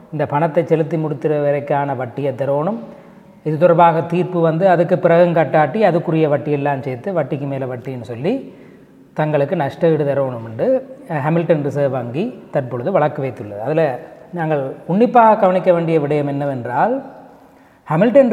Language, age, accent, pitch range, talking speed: Tamil, 30-49, native, 155-195 Hz, 135 wpm